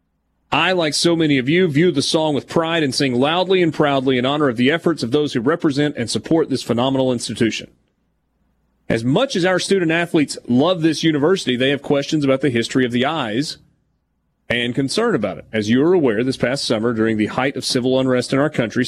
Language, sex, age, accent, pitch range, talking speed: English, male, 30-49, American, 125-160 Hz, 215 wpm